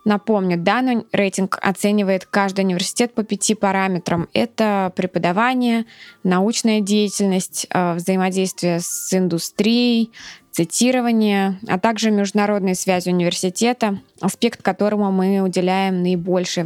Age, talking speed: 20-39, 95 wpm